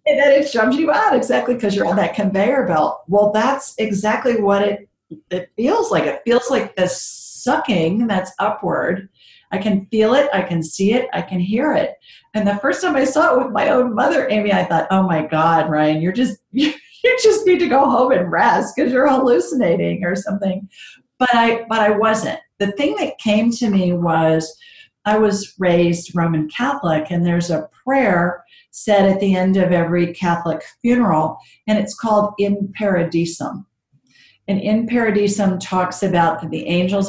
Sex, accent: female, American